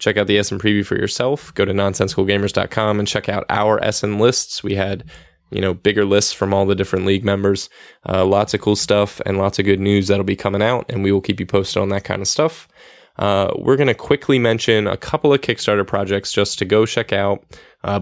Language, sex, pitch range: English, male, 100-110 Hz